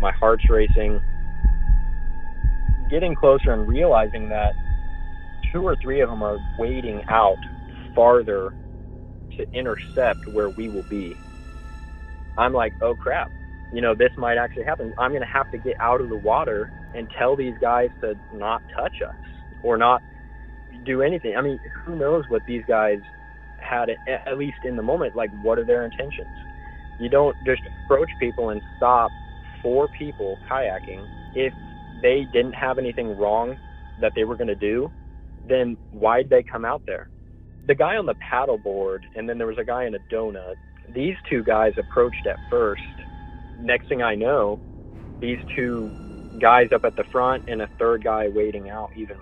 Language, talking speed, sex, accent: English, 170 wpm, male, American